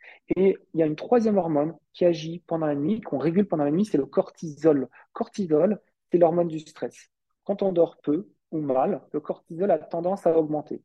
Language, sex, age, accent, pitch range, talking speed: French, male, 40-59, French, 155-195 Hz, 210 wpm